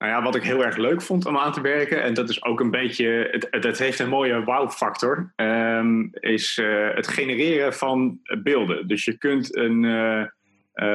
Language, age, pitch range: English, 30-49, 110-140 Hz